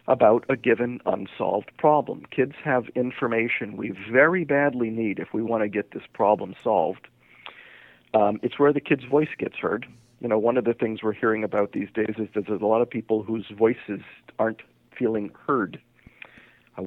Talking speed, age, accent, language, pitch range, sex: 185 wpm, 50-69, American, English, 110-130 Hz, male